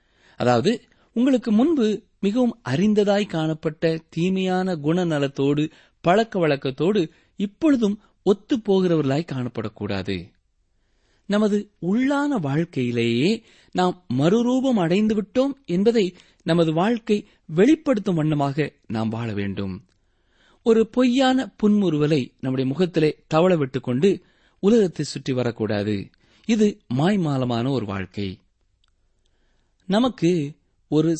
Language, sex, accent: Tamil, male, native